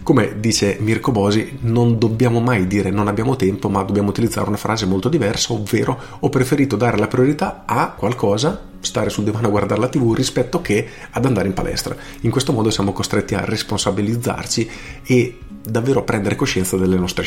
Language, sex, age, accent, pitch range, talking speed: Italian, male, 40-59, native, 95-120 Hz, 185 wpm